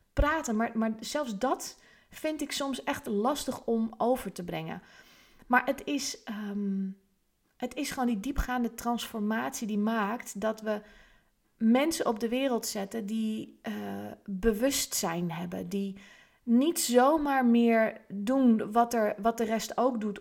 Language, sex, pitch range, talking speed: Dutch, female, 205-255 Hz, 145 wpm